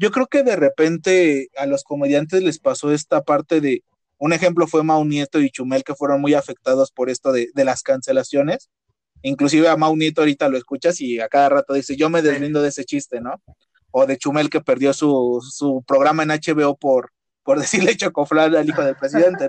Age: 30-49